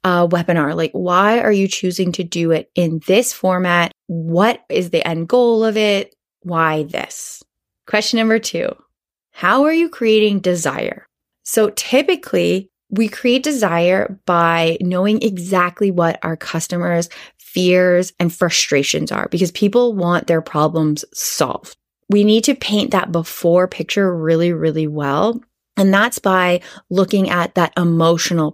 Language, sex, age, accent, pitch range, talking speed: English, female, 20-39, American, 165-210 Hz, 140 wpm